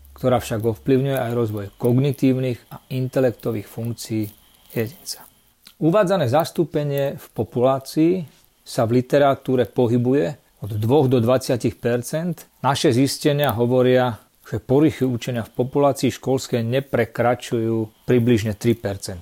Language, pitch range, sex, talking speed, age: Slovak, 120-145 Hz, male, 105 wpm, 40-59